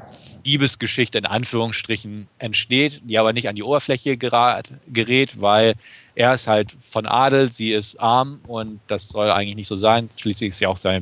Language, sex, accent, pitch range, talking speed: German, male, German, 110-135 Hz, 180 wpm